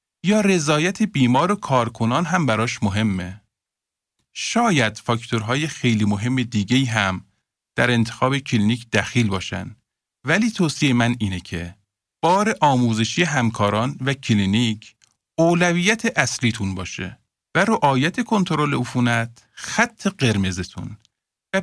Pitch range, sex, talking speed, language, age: 110-170 Hz, male, 110 wpm, Persian, 50-69